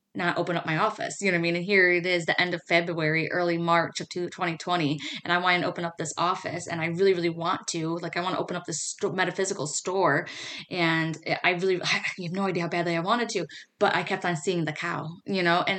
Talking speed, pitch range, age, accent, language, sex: 260 wpm, 170-205 Hz, 20-39, American, English, female